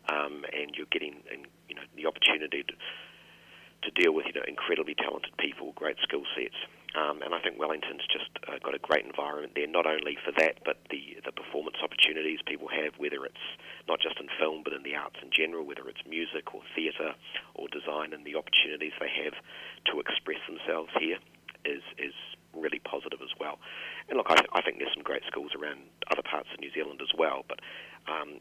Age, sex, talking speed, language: 40-59, male, 195 wpm, English